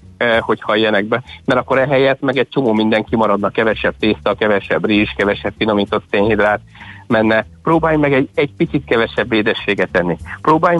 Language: Hungarian